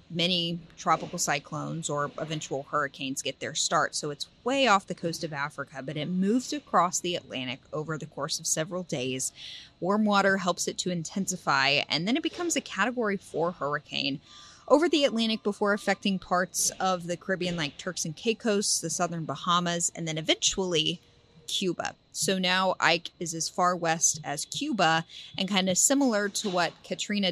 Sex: female